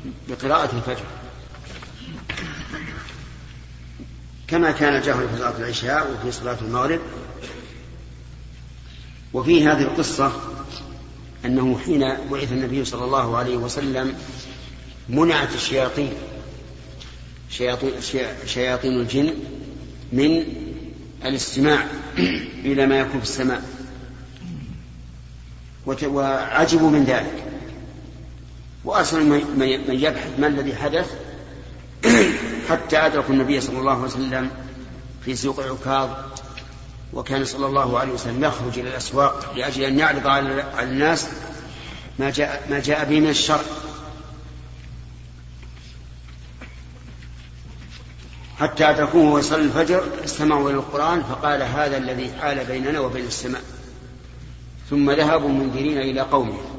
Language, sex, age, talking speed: Arabic, male, 50-69, 95 wpm